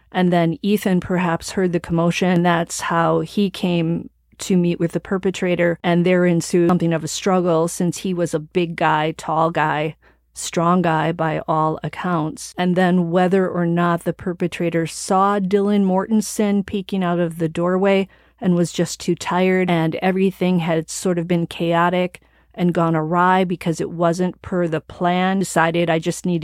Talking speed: 175 wpm